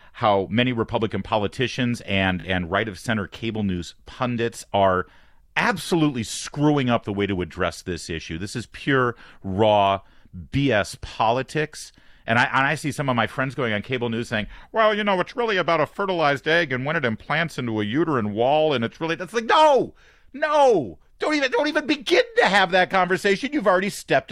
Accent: American